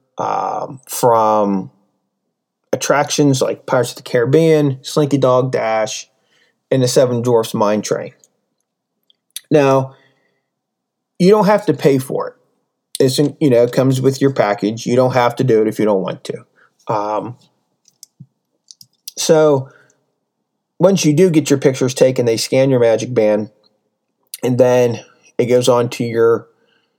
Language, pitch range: English, 115-145 Hz